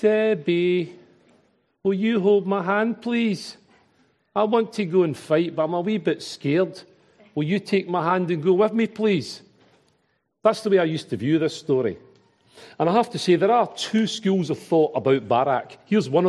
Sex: male